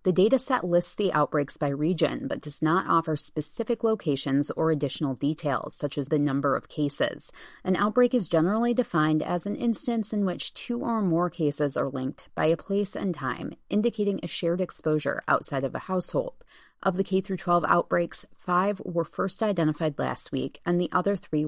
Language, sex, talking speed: English, female, 180 wpm